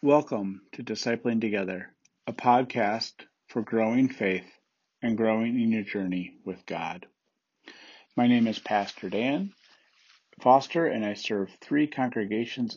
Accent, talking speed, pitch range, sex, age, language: American, 125 wpm, 105-120 Hz, male, 50-69, English